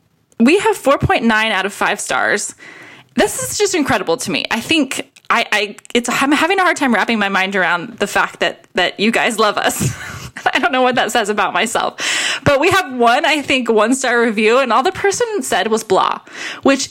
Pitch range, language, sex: 190-260 Hz, English, female